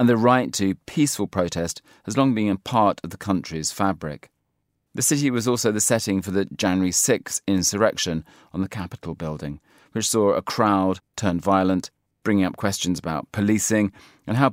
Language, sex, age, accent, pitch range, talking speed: English, male, 40-59, British, 90-110 Hz, 180 wpm